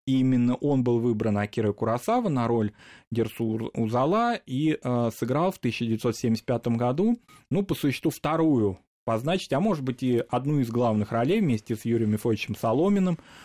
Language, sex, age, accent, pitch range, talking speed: Russian, male, 20-39, native, 110-135 Hz, 145 wpm